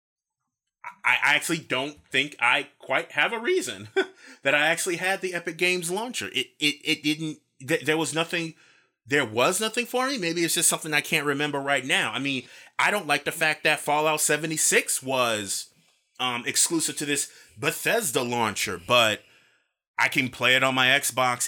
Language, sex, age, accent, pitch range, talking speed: English, male, 30-49, American, 130-170 Hz, 175 wpm